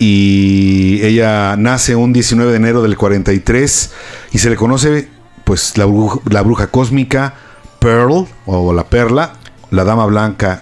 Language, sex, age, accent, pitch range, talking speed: English, male, 50-69, Mexican, 110-135 Hz, 145 wpm